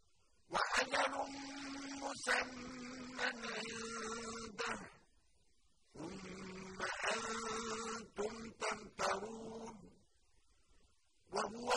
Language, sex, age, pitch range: Arabic, female, 50-69, 205-245 Hz